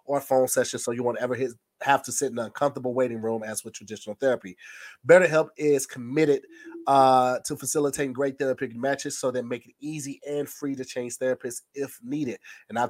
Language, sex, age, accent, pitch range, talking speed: English, male, 30-49, American, 120-145 Hz, 200 wpm